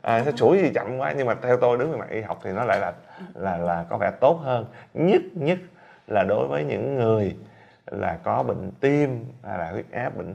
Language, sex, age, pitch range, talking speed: Vietnamese, male, 30-49, 100-140 Hz, 240 wpm